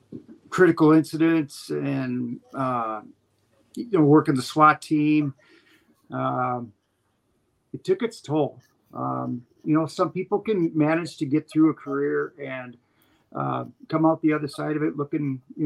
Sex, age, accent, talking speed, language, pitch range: male, 50-69, American, 140 wpm, English, 125-155 Hz